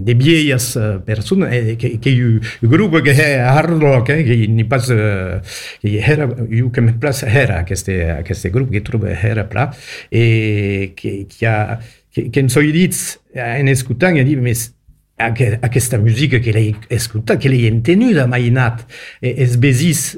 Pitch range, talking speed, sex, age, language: 110-140 Hz, 95 wpm, male, 50-69, French